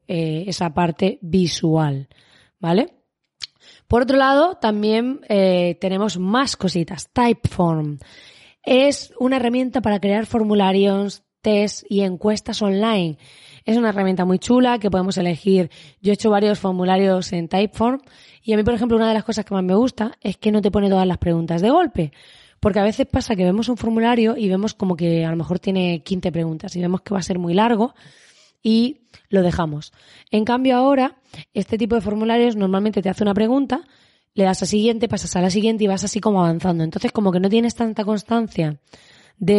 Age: 20-39